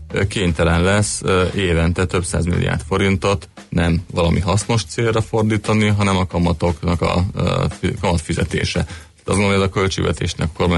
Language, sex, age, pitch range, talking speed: Hungarian, male, 30-49, 85-95 Hz, 145 wpm